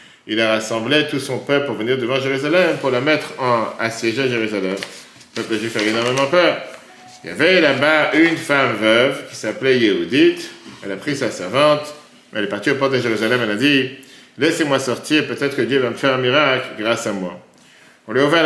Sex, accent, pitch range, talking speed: male, French, 115-150 Hz, 215 wpm